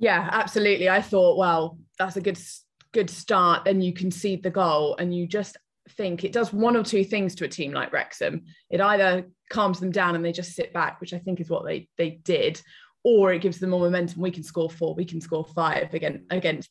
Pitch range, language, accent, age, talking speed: 170-210 Hz, English, British, 20-39, 230 wpm